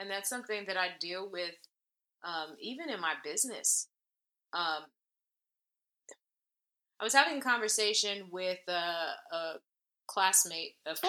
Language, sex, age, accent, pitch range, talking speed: English, female, 20-39, American, 160-215 Hz, 120 wpm